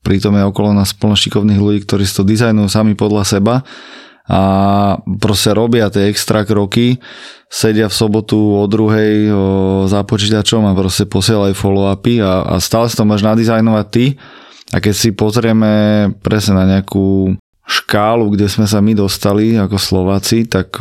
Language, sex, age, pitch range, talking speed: Slovak, male, 20-39, 95-110 Hz, 145 wpm